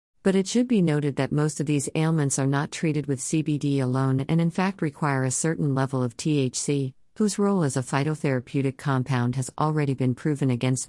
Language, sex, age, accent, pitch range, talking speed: English, female, 50-69, American, 130-160 Hz, 200 wpm